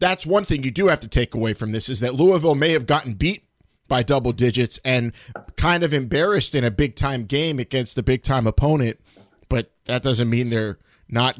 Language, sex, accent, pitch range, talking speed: English, male, American, 120-150 Hz, 215 wpm